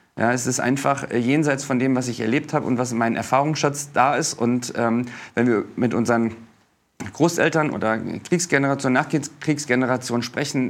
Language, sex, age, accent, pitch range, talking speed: German, male, 40-59, German, 120-145 Hz, 165 wpm